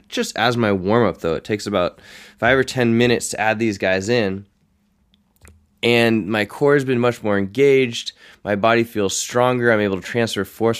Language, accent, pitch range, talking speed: English, American, 95-120 Hz, 190 wpm